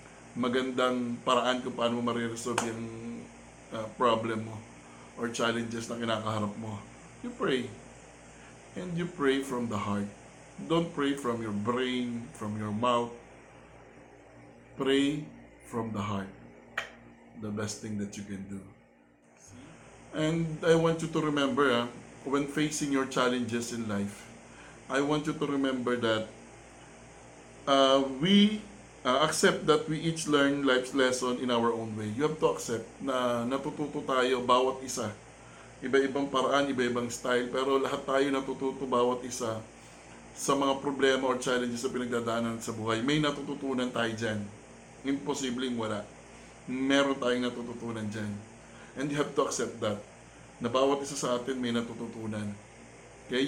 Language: Filipino